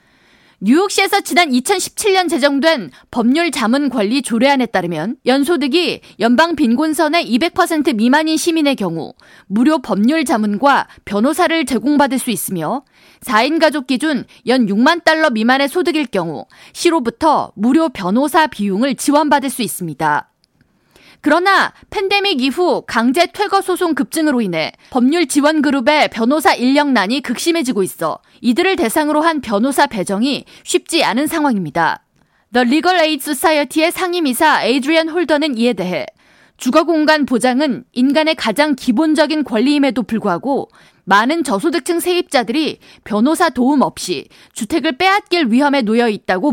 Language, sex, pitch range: Korean, female, 240-325 Hz